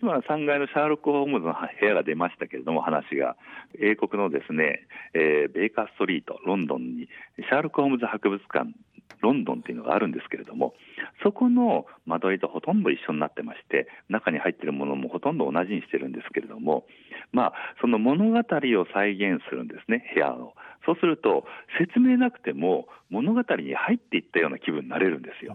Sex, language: male, Japanese